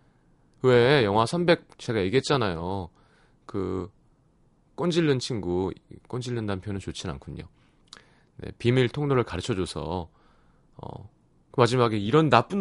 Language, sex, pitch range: Korean, male, 95-140 Hz